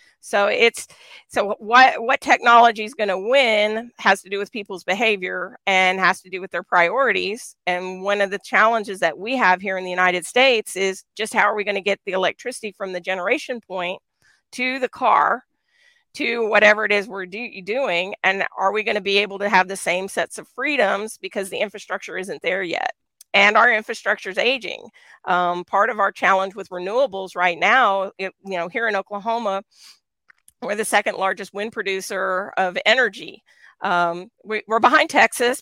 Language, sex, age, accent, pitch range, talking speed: English, female, 40-59, American, 190-220 Hz, 185 wpm